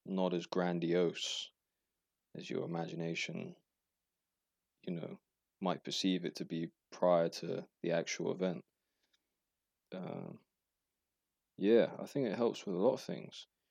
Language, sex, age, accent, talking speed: English, male, 20-39, British, 125 wpm